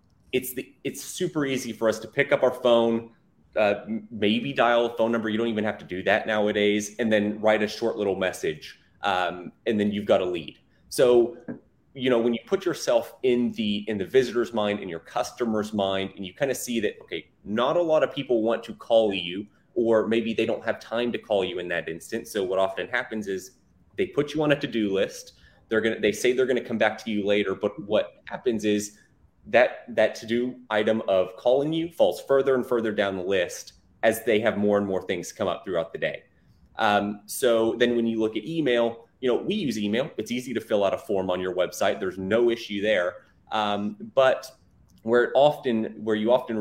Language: English